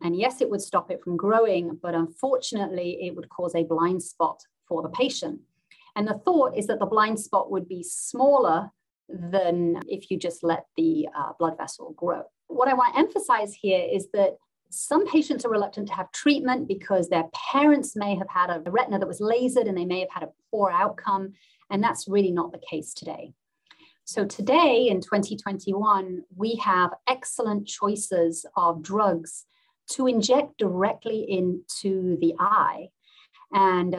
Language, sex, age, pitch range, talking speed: English, female, 30-49, 175-245 Hz, 175 wpm